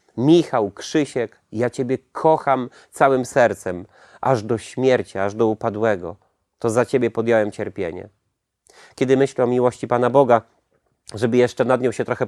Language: Polish